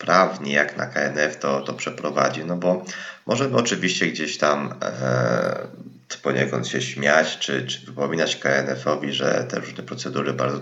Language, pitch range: Polish, 70-80 Hz